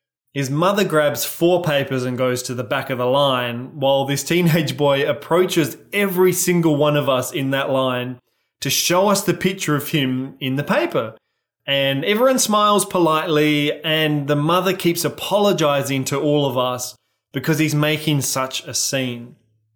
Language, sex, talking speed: English, male, 165 wpm